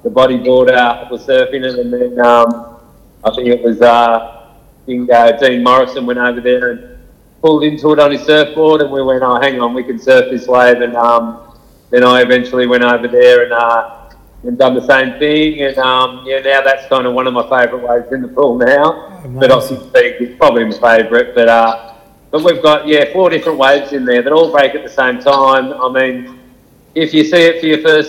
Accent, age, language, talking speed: Australian, 30-49, English, 220 wpm